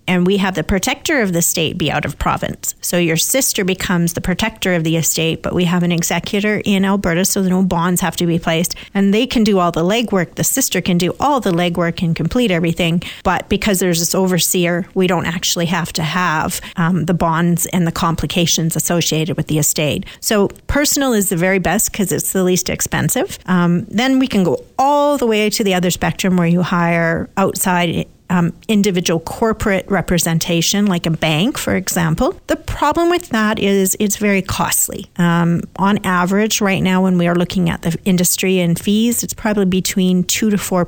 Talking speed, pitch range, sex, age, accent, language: 200 wpm, 170-205 Hz, female, 40-59, American, English